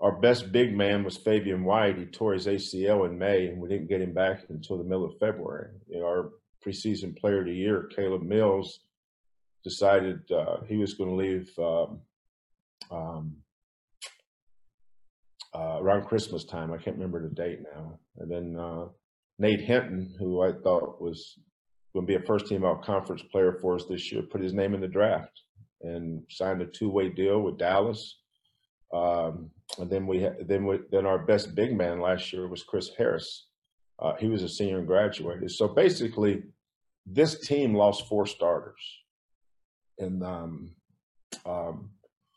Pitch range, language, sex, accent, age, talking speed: 90-105 Hz, English, male, American, 50-69, 160 wpm